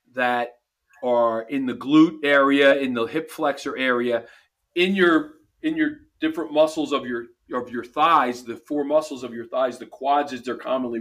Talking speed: 180 wpm